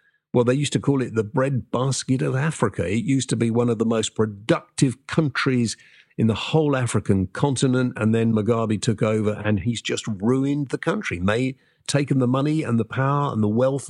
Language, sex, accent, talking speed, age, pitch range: English, male, British, 200 wpm, 50-69, 110-155 Hz